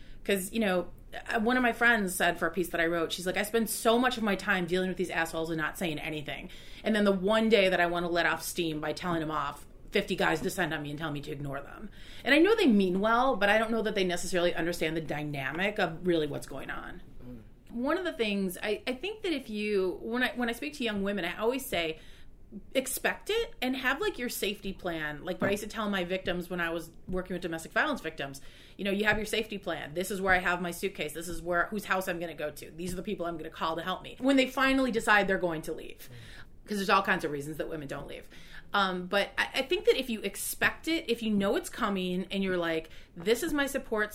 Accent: American